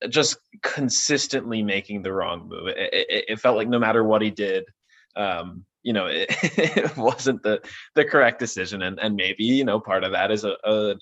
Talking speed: 205 wpm